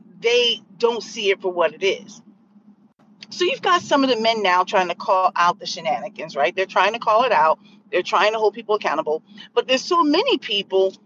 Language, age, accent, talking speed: English, 40-59, American, 215 wpm